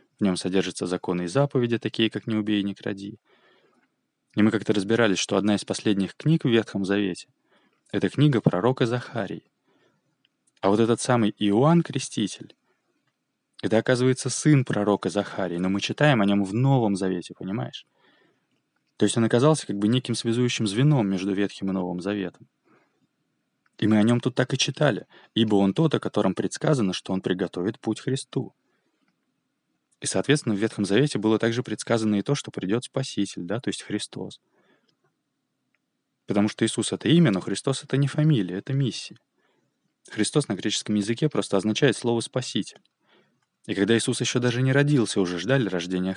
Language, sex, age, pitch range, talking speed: Russian, male, 20-39, 100-125 Hz, 170 wpm